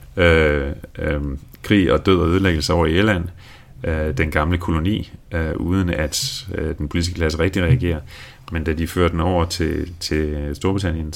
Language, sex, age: Danish, male, 30-49